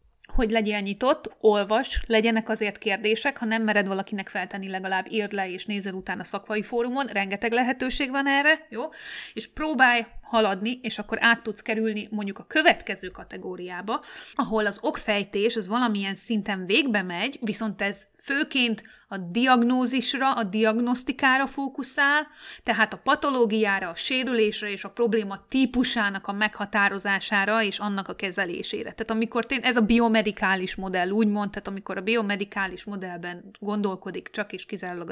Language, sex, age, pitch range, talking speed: Hungarian, female, 30-49, 200-245 Hz, 150 wpm